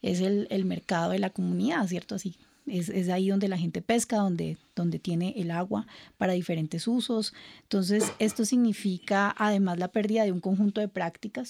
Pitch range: 180-220 Hz